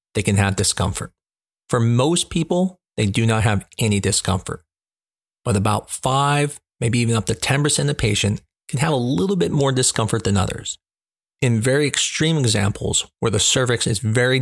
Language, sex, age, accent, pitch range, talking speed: English, male, 40-59, American, 105-130 Hz, 175 wpm